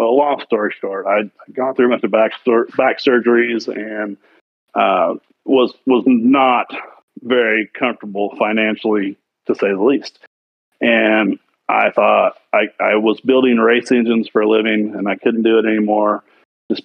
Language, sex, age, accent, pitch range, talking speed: English, male, 40-59, American, 100-120 Hz, 160 wpm